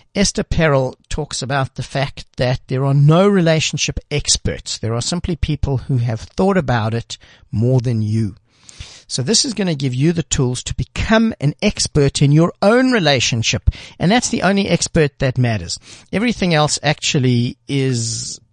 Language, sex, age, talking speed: English, male, 60-79, 170 wpm